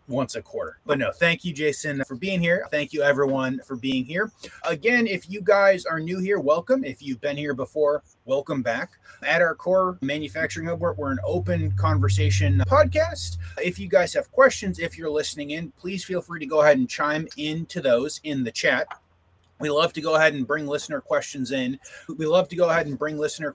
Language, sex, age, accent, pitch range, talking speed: English, male, 30-49, American, 135-185 Hz, 210 wpm